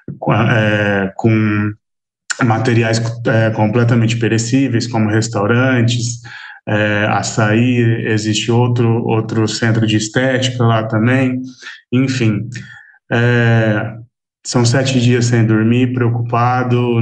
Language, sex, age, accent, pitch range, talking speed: Portuguese, male, 20-39, Brazilian, 110-120 Hz, 80 wpm